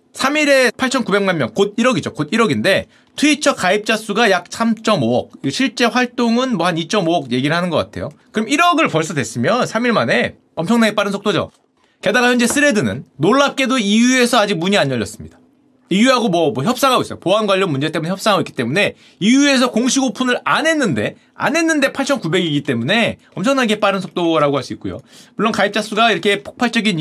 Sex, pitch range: male, 210-280 Hz